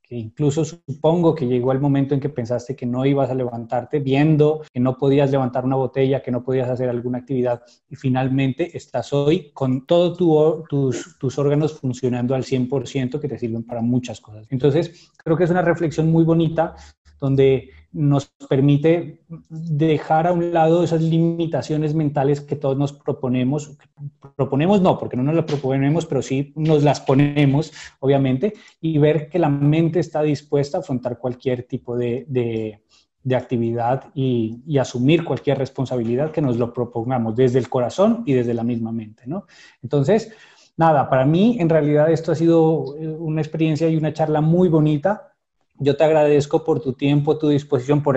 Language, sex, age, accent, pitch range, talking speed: Spanish, male, 20-39, Colombian, 130-160 Hz, 175 wpm